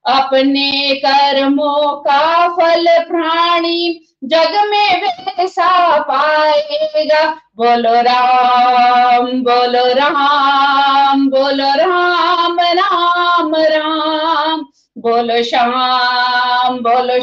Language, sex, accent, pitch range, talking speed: Hindi, female, native, 290-375 Hz, 70 wpm